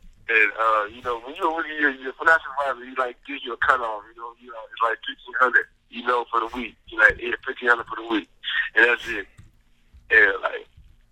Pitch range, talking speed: 110-140 Hz, 215 wpm